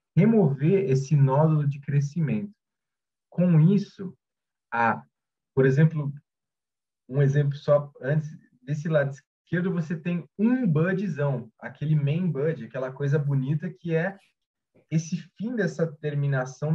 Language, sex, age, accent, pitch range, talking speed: Portuguese, male, 20-39, Brazilian, 125-165 Hz, 120 wpm